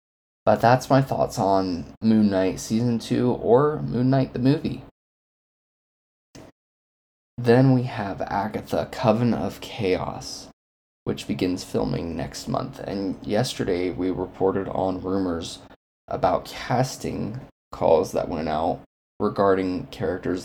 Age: 20-39